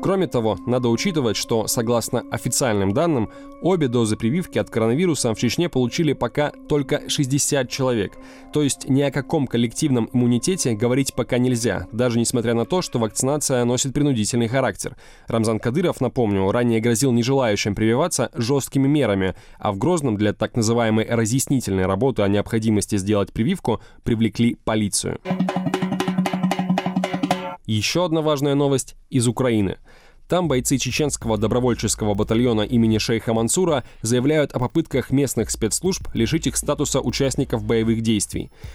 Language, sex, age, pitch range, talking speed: Russian, male, 20-39, 110-140 Hz, 135 wpm